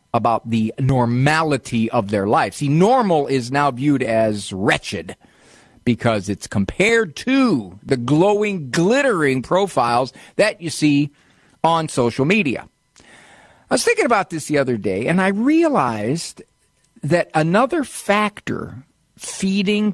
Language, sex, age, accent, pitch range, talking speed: English, male, 50-69, American, 145-195 Hz, 125 wpm